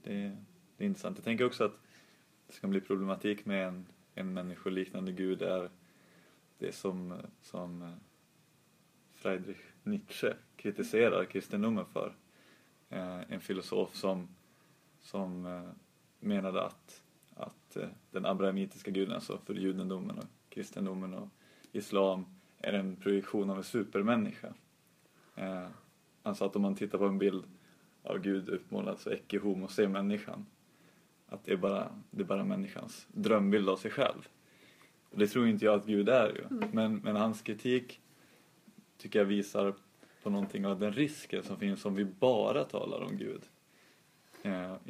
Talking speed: 145 wpm